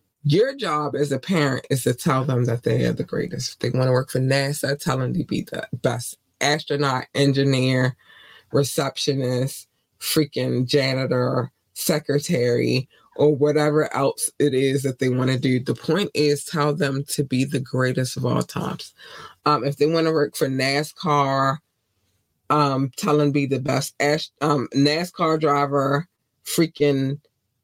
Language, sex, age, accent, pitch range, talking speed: English, female, 20-39, American, 130-155 Hz, 160 wpm